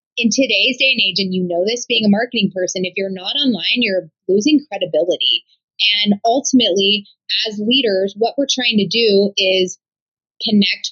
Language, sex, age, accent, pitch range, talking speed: English, female, 20-39, American, 195-245 Hz, 170 wpm